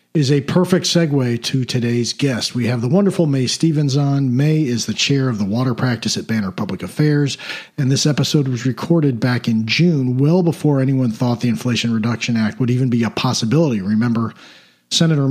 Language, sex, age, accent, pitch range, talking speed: English, male, 50-69, American, 110-140 Hz, 190 wpm